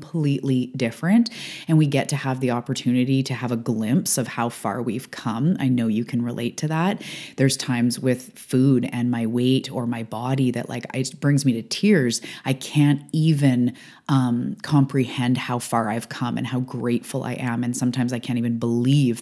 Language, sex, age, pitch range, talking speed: English, female, 30-49, 120-140 Hz, 195 wpm